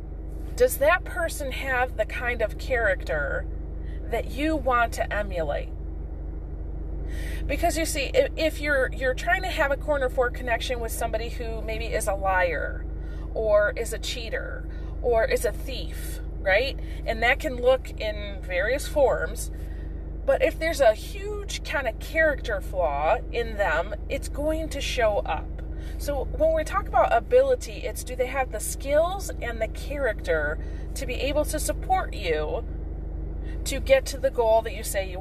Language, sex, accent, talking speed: English, female, American, 165 wpm